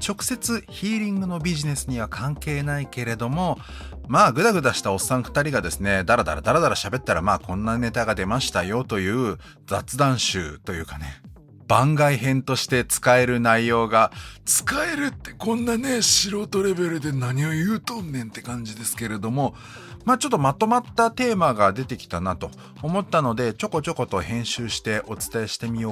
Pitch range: 105-175 Hz